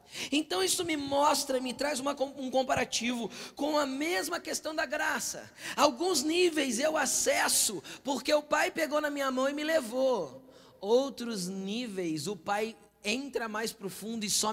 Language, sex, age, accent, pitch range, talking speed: Portuguese, male, 20-39, Brazilian, 220-305 Hz, 155 wpm